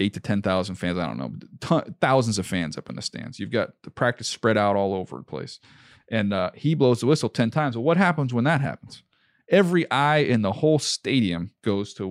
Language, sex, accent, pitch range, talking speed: English, male, American, 110-145 Hz, 235 wpm